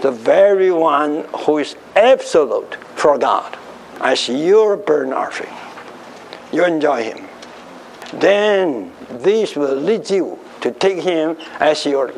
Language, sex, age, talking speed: English, male, 60-79, 125 wpm